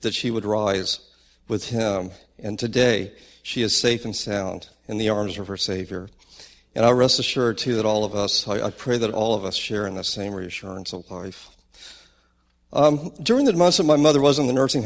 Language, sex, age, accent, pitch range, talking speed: English, male, 50-69, American, 105-135 Hz, 215 wpm